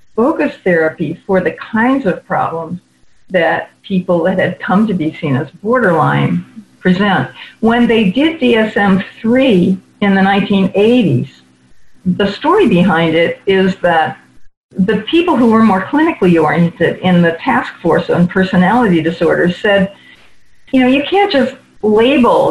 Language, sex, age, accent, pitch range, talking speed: English, female, 50-69, American, 175-225 Hz, 140 wpm